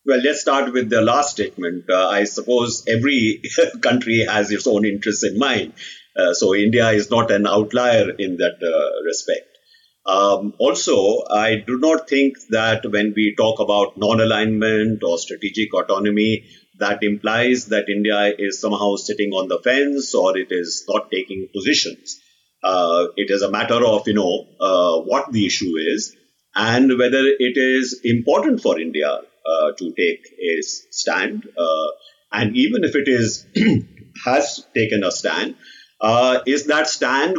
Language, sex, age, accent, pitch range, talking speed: English, male, 50-69, Indian, 105-145 Hz, 160 wpm